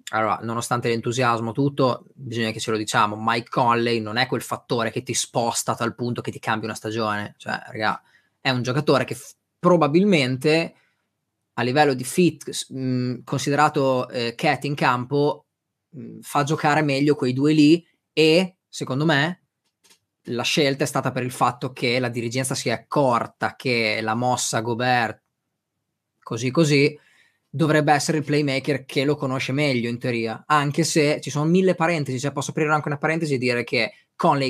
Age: 20-39